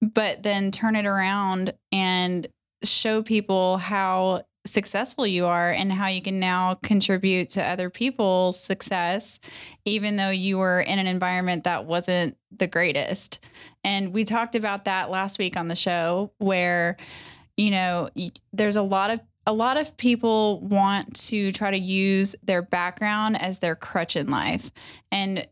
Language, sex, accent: English, female, American